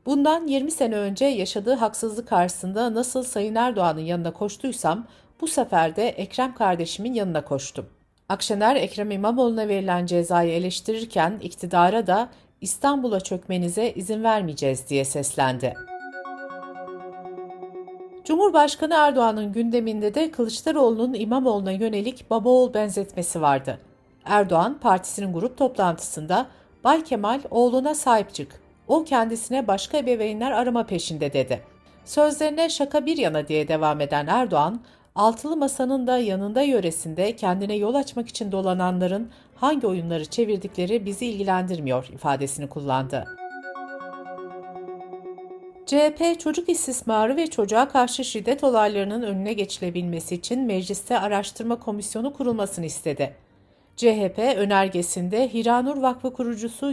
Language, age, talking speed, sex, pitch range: Turkish, 60-79, 110 wpm, female, 180-250 Hz